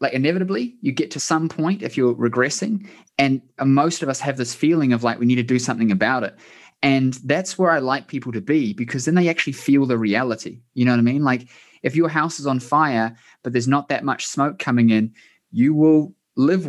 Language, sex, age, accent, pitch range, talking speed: English, male, 20-39, Australian, 125-155 Hz, 230 wpm